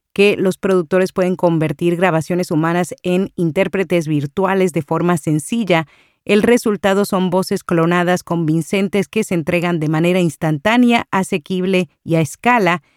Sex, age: female, 40-59